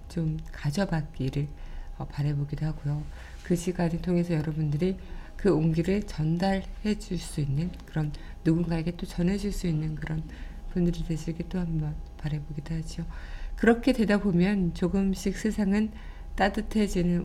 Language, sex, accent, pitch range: Korean, female, native, 155-190 Hz